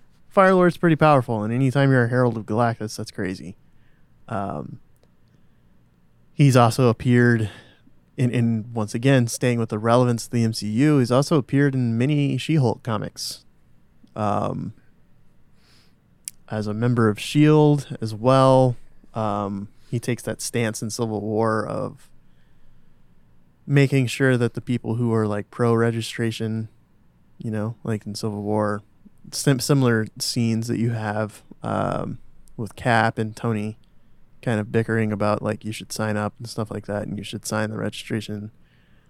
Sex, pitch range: male, 110-130 Hz